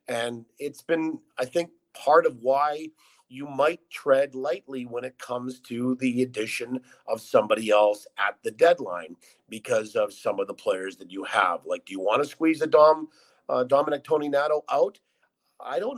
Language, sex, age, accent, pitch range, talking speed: English, male, 50-69, American, 115-160 Hz, 175 wpm